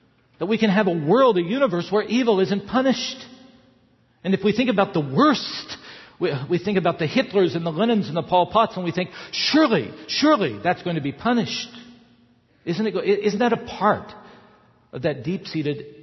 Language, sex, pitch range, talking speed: English, male, 115-160 Hz, 185 wpm